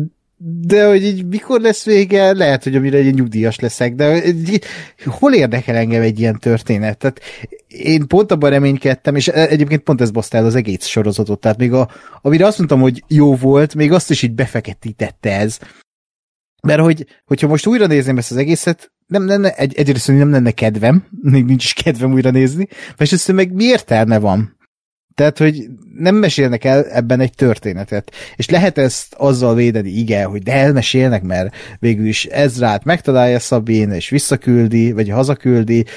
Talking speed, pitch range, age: 170 wpm, 115-150 Hz, 30-49